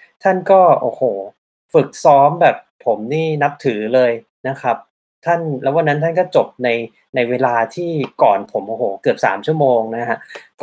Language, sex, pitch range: Thai, male, 125-165 Hz